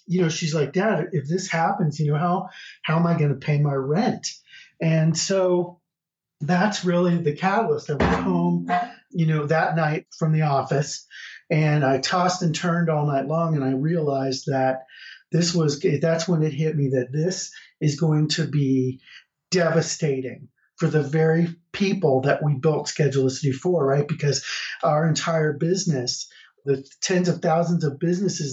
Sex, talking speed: male, 170 wpm